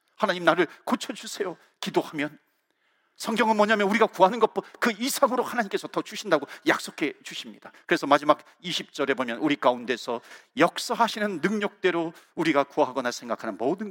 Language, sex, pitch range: Korean, male, 160-225 Hz